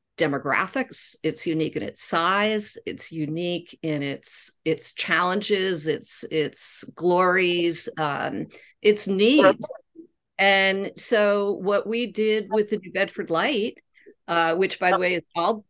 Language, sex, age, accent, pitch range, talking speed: English, female, 50-69, American, 165-210 Hz, 135 wpm